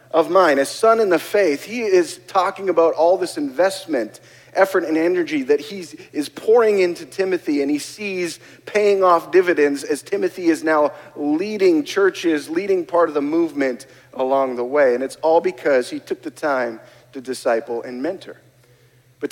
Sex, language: male, English